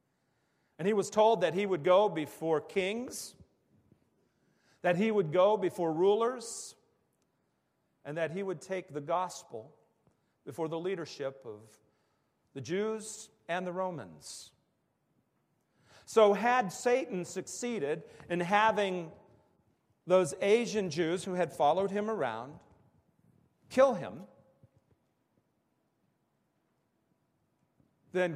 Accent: American